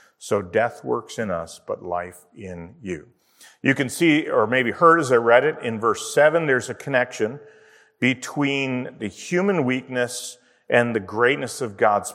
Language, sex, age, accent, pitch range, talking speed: English, male, 40-59, American, 105-165 Hz, 170 wpm